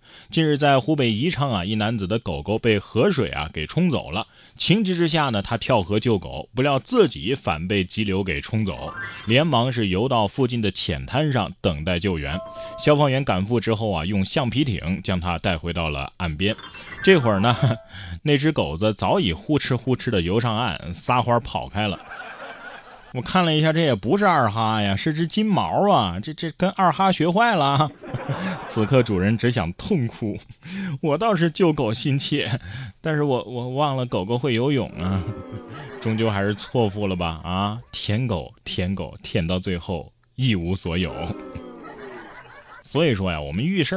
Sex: male